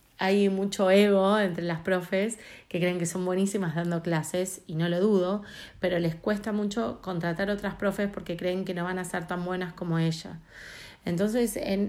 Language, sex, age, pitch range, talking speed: Spanish, female, 30-49, 175-210 Hz, 180 wpm